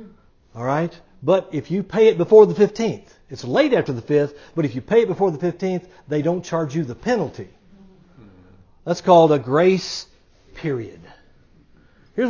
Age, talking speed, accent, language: 60-79, 165 wpm, American, English